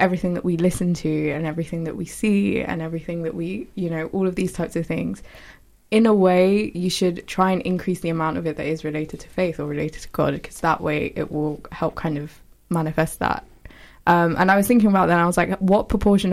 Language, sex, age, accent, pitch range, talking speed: English, female, 20-39, British, 160-190 Hz, 240 wpm